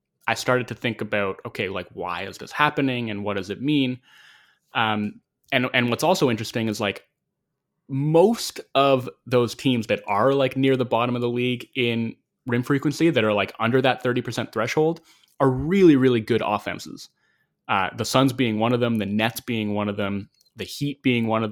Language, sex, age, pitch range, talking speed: English, male, 20-39, 105-135 Hz, 195 wpm